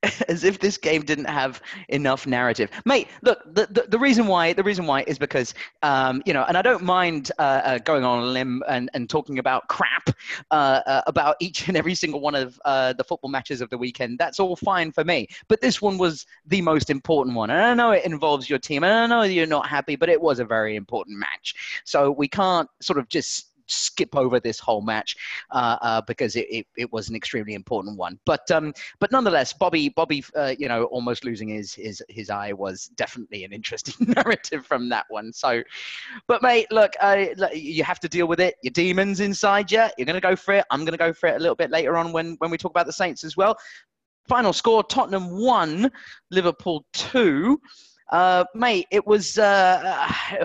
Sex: male